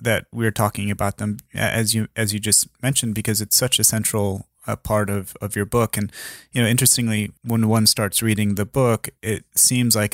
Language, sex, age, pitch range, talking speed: English, male, 30-49, 100-115 Hz, 205 wpm